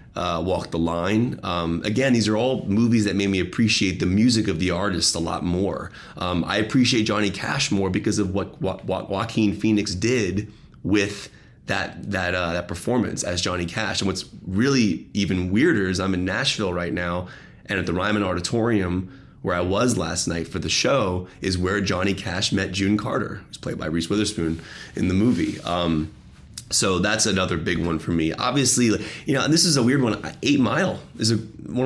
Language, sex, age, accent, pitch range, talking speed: English, male, 30-49, American, 90-110 Hz, 200 wpm